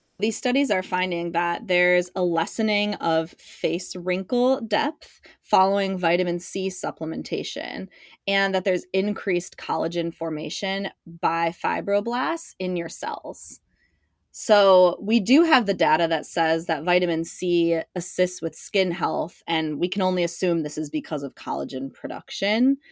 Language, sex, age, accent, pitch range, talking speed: English, female, 20-39, American, 160-205 Hz, 140 wpm